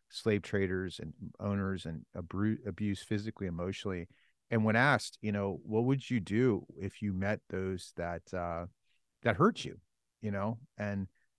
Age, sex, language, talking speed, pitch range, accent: 40-59, male, English, 155 wpm, 90-115 Hz, American